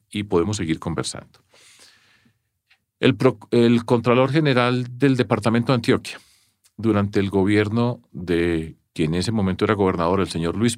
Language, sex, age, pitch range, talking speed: English, male, 40-59, 95-125 Hz, 140 wpm